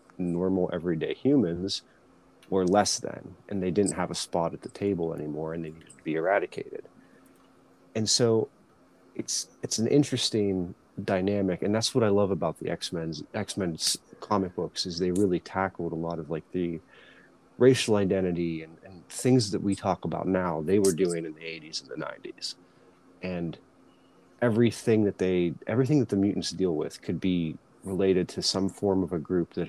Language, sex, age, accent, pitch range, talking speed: English, male, 30-49, American, 85-105 Hz, 180 wpm